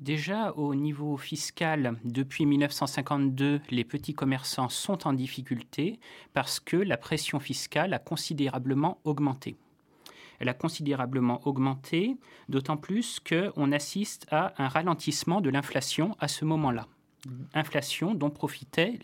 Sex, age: male, 30-49